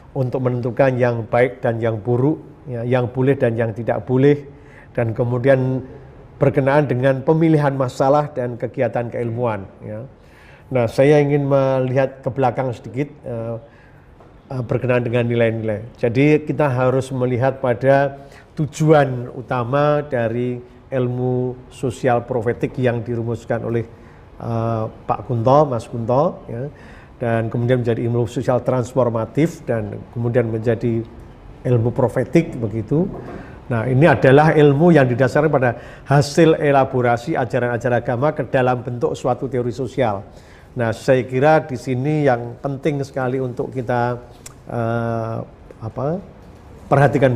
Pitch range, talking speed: 120-140 Hz, 120 wpm